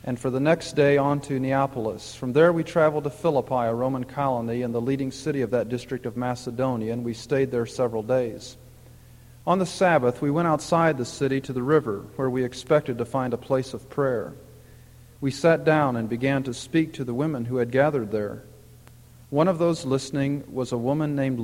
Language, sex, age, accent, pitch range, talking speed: English, male, 40-59, American, 120-150 Hz, 205 wpm